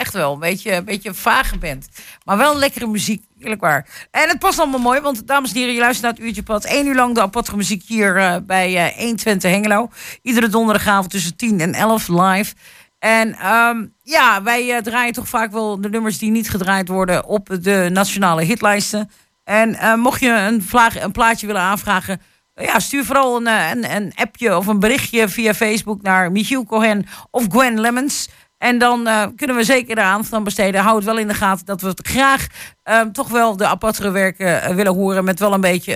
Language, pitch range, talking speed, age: Dutch, 200-240 Hz, 210 wpm, 50-69